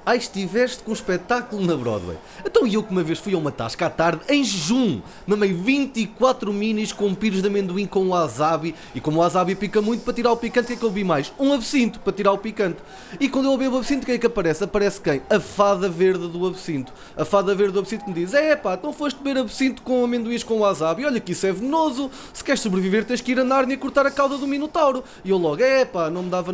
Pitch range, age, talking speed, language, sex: 195-255 Hz, 20-39, 260 wpm, Portuguese, male